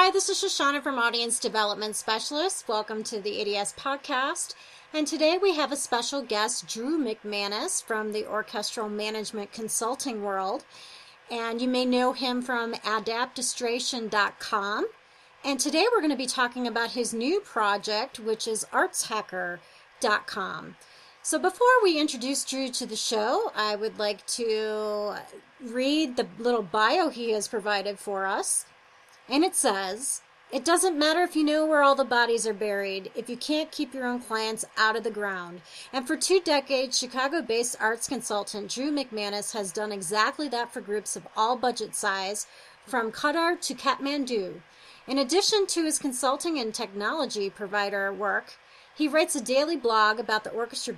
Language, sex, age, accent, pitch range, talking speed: English, female, 30-49, American, 215-280 Hz, 160 wpm